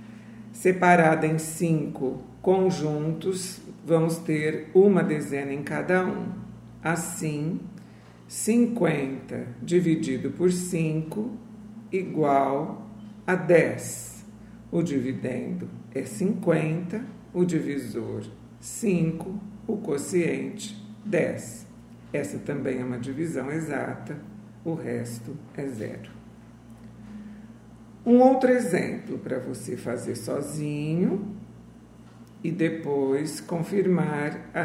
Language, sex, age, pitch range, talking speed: Portuguese, male, 50-69, 120-180 Hz, 85 wpm